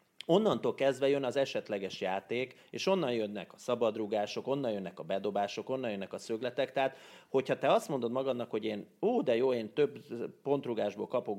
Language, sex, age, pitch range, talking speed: Hungarian, male, 30-49, 105-150 Hz, 180 wpm